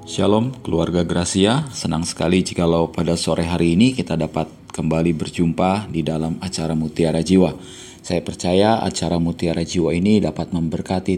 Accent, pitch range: native, 85-100 Hz